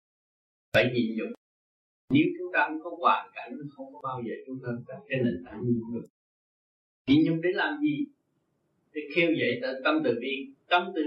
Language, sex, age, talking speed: Vietnamese, male, 60-79, 190 wpm